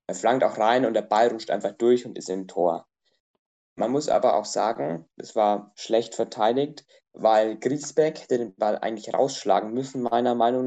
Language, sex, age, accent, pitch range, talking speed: German, male, 20-39, German, 110-130 Hz, 185 wpm